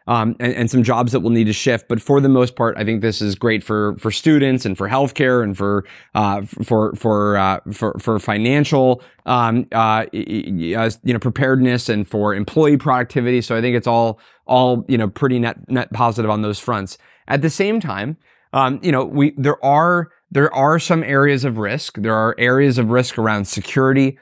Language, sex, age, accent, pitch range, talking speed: English, male, 20-39, American, 115-140 Hz, 205 wpm